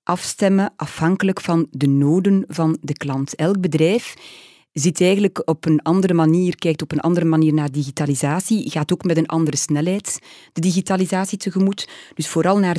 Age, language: 30-49, Dutch